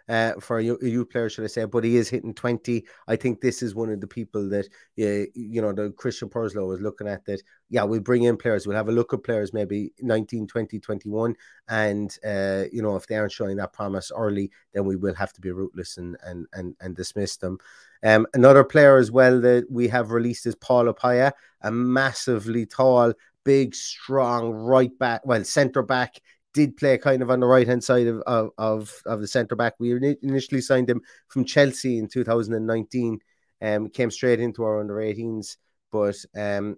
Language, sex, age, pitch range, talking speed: English, male, 30-49, 105-120 Hz, 200 wpm